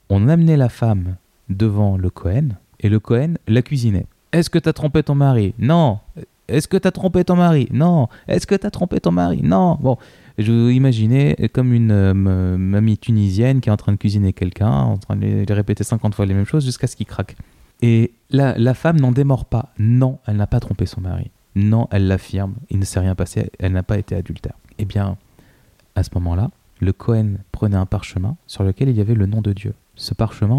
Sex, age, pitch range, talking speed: male, 20-39, 95-120 Hz, 220 wpm